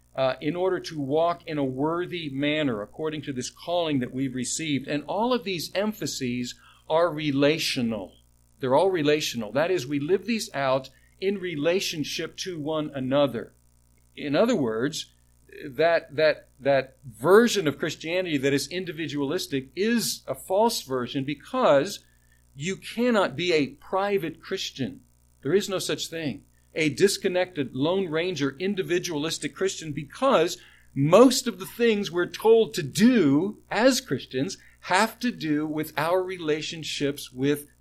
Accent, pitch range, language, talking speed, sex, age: American, 130-180 Hz, English, 140 wpm, male, 50-69